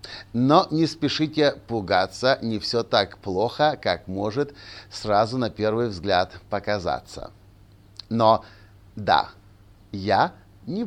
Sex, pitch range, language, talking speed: male, 100-145 Hz, Russian, 105 wpm